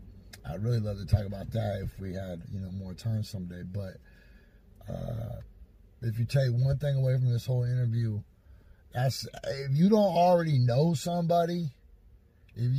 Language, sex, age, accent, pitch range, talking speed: English, male, 30-49, American, 115-140 Hz, 165 wpm